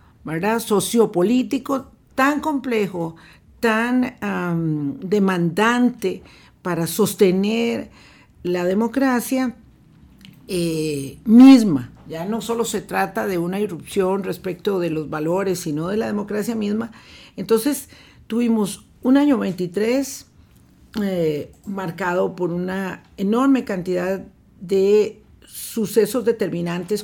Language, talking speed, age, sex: Spanish, 95 wpm, 50-69, female